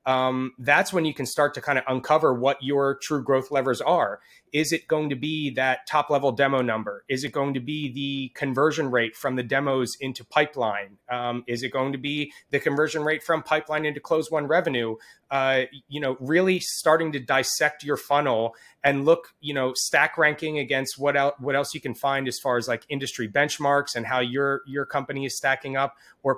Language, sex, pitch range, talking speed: English, male, 125-145 Hz, 205 wpm